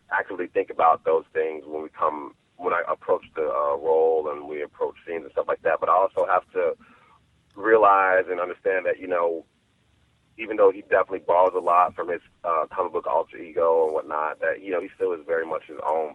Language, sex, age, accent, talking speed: English, male, 30-49, American, 220 wpm